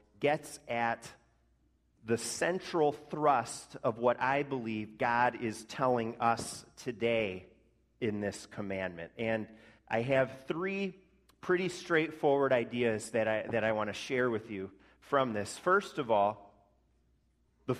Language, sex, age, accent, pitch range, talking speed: English, male, 40-59, American, 105-140 Hz, 130 wpm